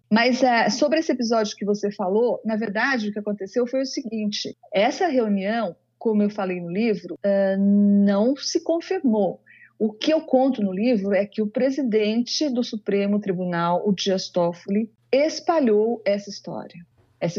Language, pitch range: Portuguese, 195-245 Hz